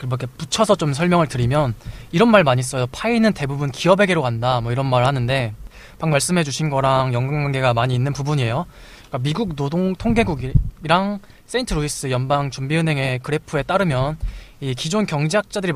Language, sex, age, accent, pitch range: Korean, male, 20-39, native, 130-175 Hz